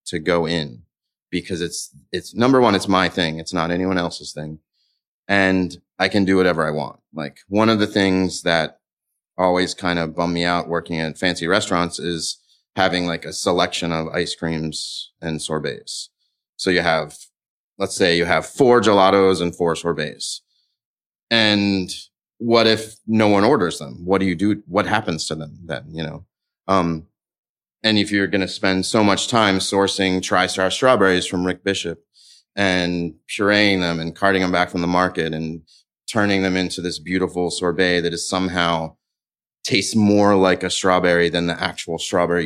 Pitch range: 85-95 Hz